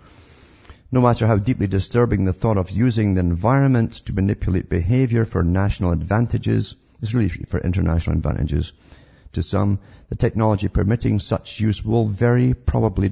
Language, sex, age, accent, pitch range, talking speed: English, male, 50-69, British, 85-105 Hz, 145 wpm